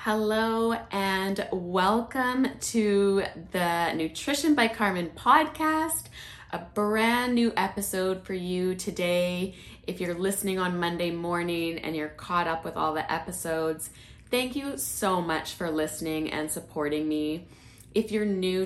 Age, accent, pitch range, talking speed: 20-39, American, 160-200 Hz, 135 wpm